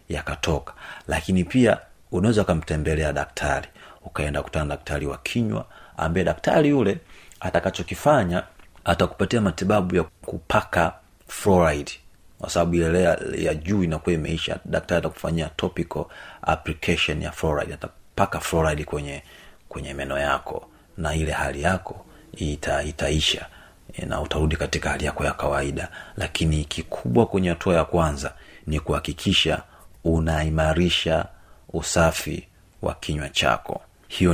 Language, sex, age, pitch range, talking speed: Swahili, male, 40-59, 75-90 Hz, 115 wpm